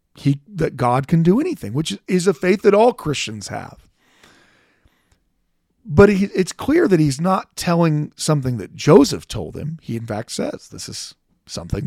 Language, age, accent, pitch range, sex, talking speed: English, 40-59, American, 115-175 Hz, male, 165 wpm